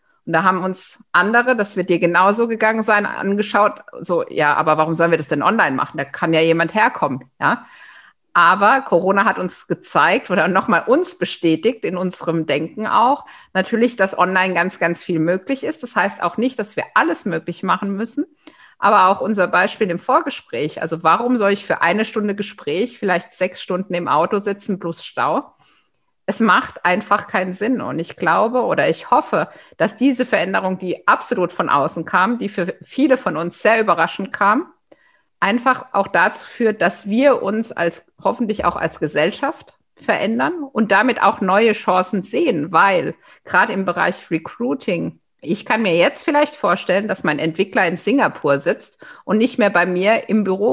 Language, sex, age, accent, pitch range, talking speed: German, female, 50-69, German, 175-235 Hz, 180 wpm